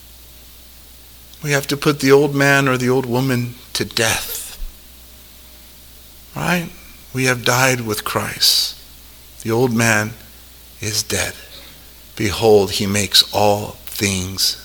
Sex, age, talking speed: male, 50-69, 120 wpm